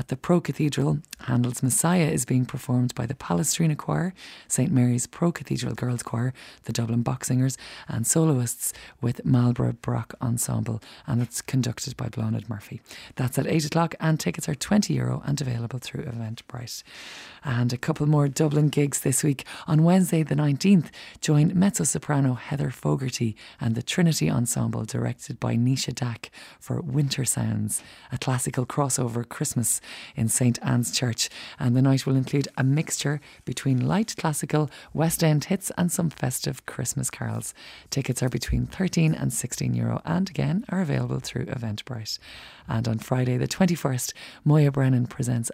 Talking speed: 155 wpm